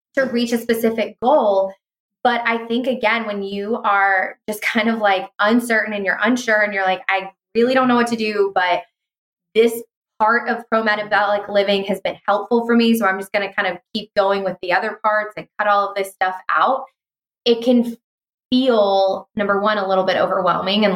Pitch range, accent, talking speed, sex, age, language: 190-230 Hz, American, 200 wpm, female, 20-39, English